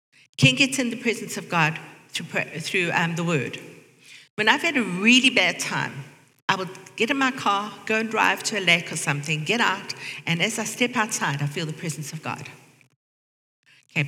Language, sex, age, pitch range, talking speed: English, female, 50-69, 155-250 Hz, 195 wpm